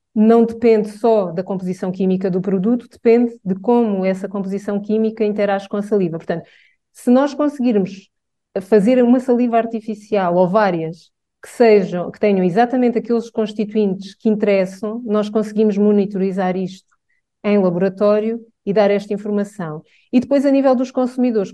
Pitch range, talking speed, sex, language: 190-230 Hz, 145 wpm, female, English